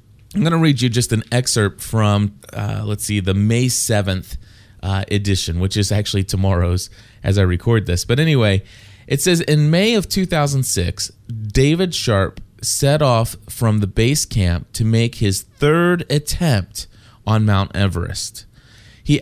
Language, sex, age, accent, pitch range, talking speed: English, male, 30-49, American, 100-130 Hz, 155 wpm